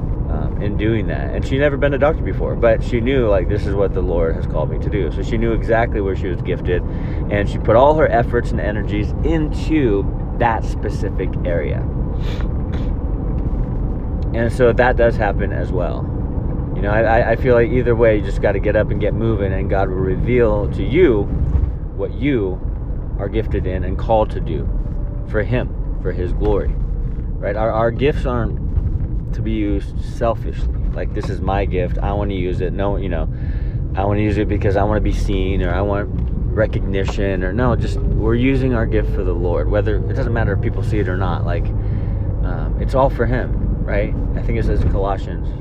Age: 30-49